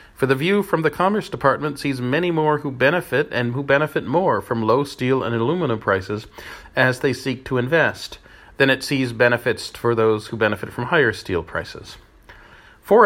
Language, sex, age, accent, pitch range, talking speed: English, male, 40-59, American, 115-145 Hz, 185 wpm